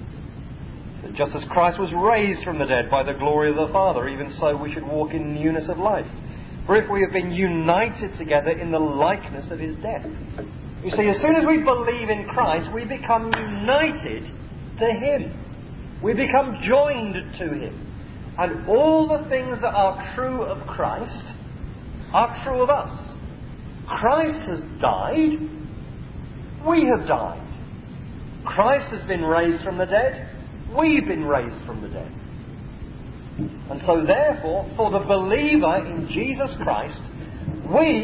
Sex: male